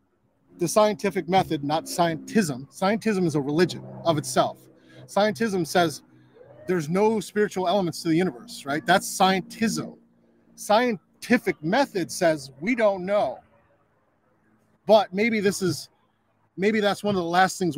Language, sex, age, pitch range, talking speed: English, male, 30-49, 150-200 Hz, 135 wpm